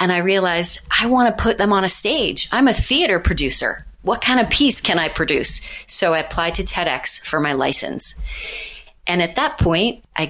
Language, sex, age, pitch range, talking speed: English, female, 30-49, 155-195 Hz, 205 wpm